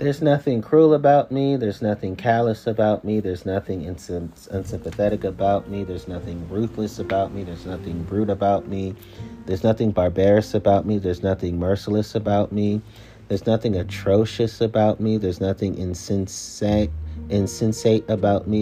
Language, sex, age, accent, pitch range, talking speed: English, male, 40-59, American, 90-105 Hz, 145 wpm